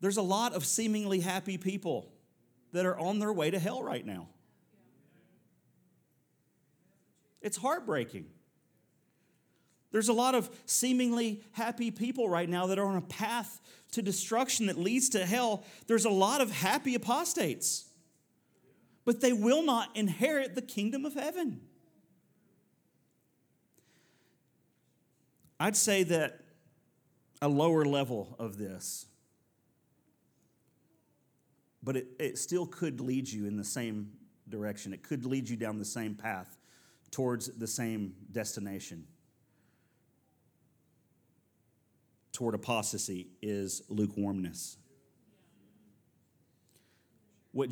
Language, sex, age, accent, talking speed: English, male, 40-59, American, 110 wpm